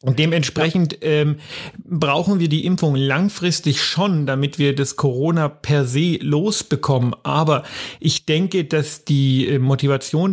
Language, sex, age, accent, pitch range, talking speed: German, male, 40-59, German, 145-170 Hz, 130 wpm